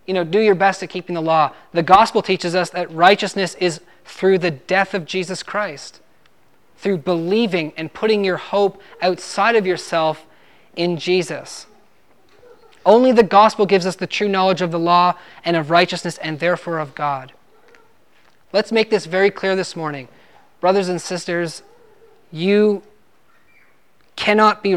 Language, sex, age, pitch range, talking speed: English, male, 20-39, 165-195 Hz, 155 wpm